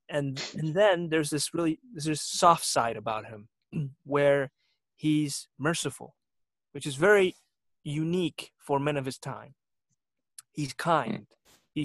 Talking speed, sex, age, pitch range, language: 135 wpm, male, 30-49, 130-155 Hz, English